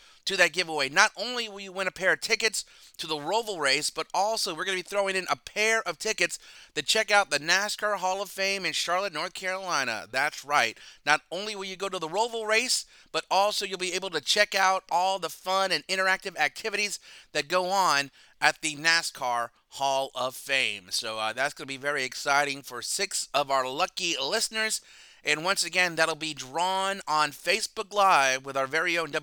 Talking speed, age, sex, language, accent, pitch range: 205 wpm, 30-49, male, English, American, 145-195 Hz